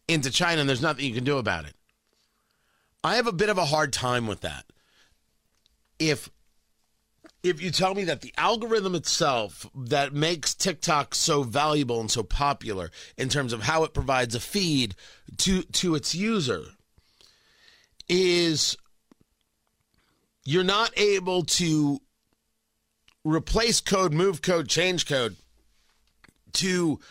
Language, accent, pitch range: English, American, 145-205 Hz